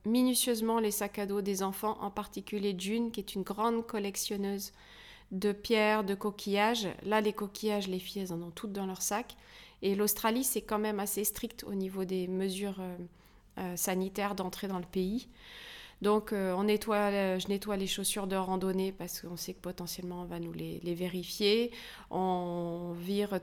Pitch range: 180-210 Hz